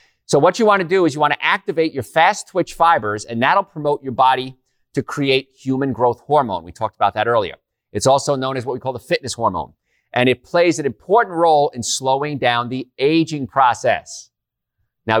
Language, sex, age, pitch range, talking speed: English, male, 40-59, 120-150 Hz, 210 wpm